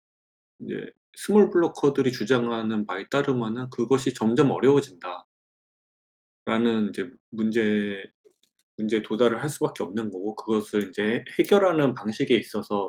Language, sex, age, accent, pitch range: Korean, male, 20-39, native, 105-135 Hz